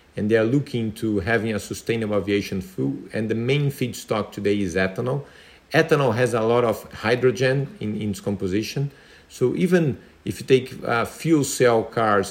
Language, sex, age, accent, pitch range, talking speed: English, male, 40-59, Brazilian, 105-135 Hz, 175 wpm